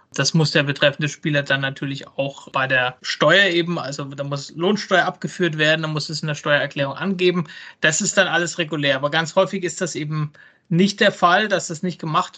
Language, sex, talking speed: German, male, 210 wpm